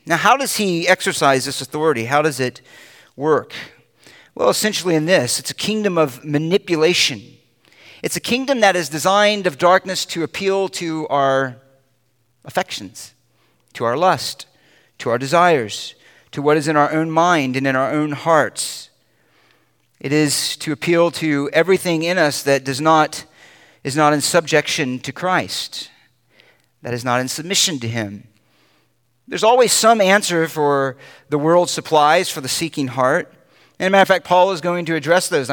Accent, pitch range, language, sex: American, 145-200 Hz, English, male